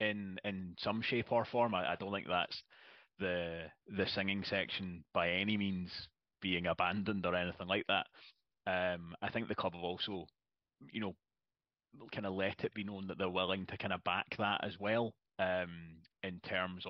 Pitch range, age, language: 90-105 Hz, 30-49, English